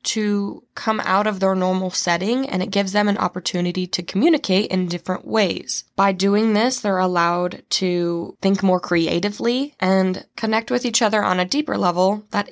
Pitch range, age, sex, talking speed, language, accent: 185-215 Hz, 20-39, female, 175 wpm, English, American